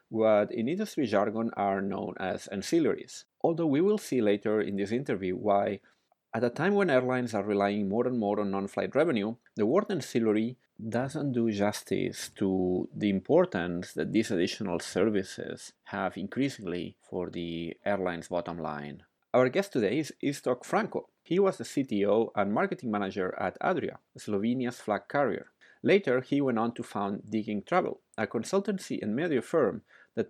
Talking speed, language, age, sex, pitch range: 160 wpm, English, 30-49, male, 100-140 Hz